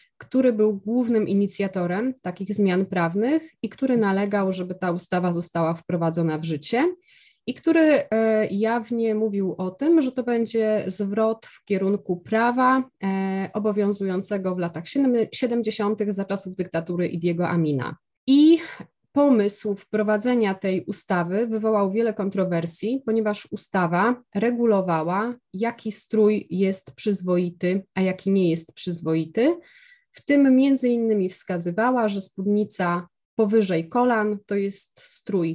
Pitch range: 180-230 Hz